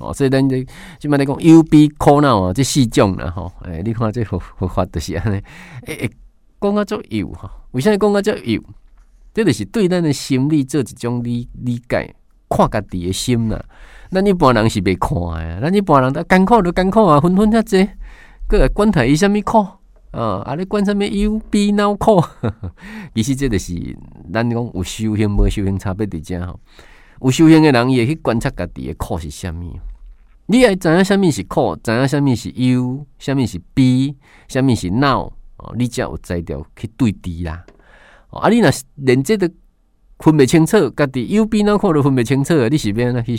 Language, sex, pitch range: Chinese, male, 105-165 Hz